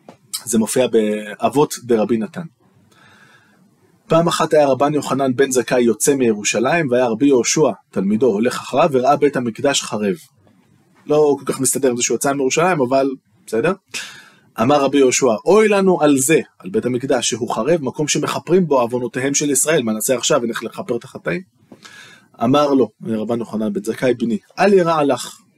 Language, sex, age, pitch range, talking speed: Hebrew, male, 20-39, 115-150 Hz, 165 wpm